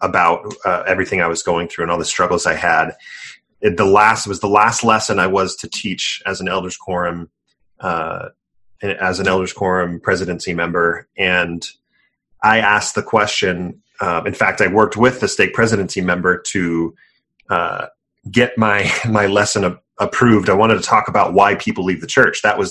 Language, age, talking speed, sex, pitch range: English, 30-49, 190 wpm, male, 90-110 Hz